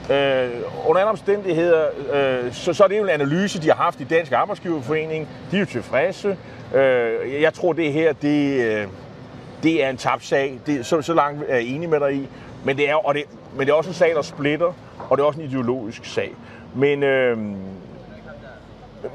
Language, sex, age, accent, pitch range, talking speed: Danish, male, 30-49, native, 125-170 Hz, 180 wpm